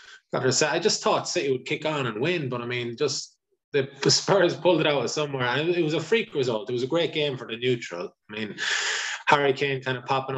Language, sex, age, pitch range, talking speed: English, male, 20-39, 115-145 Hz, 235 wpm